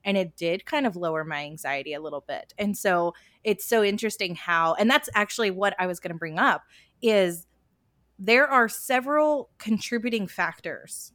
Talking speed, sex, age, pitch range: 180 wpm, female, 20-39, 165-215 Hz